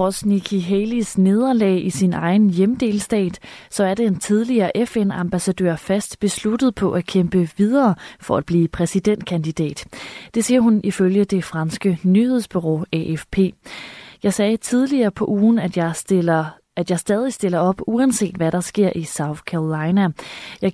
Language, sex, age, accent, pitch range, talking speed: Danish, female, 30-49, native, 175-215 Hz, 155 wpm